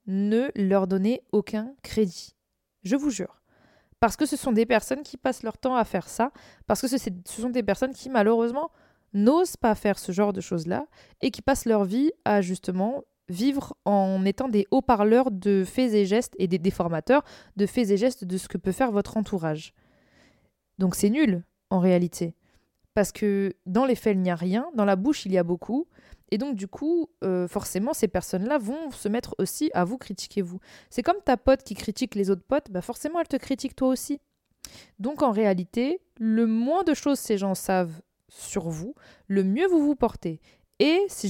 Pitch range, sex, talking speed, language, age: 195-270 Hz, female, 200 wpm, French, 20-39